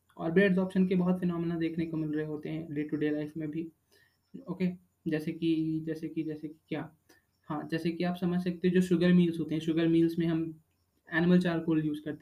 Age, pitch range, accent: 20-39, 160-190 Hz, native